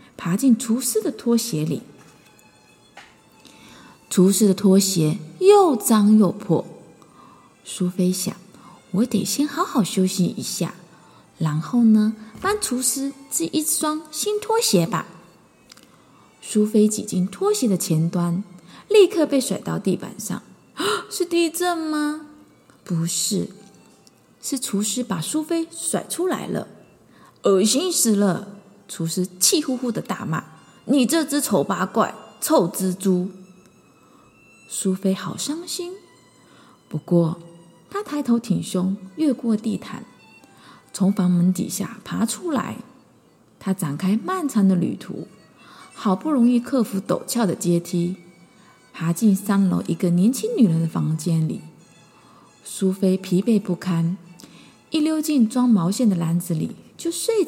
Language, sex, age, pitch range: Chinese, female, 20-39, 185-275 Hz